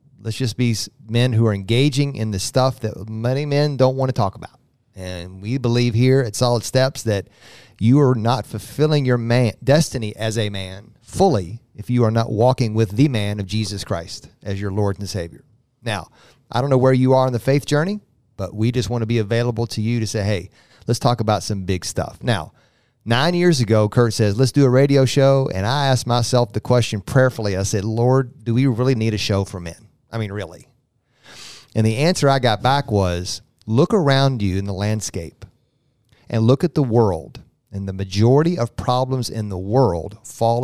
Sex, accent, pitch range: male, American, 105-130 Hz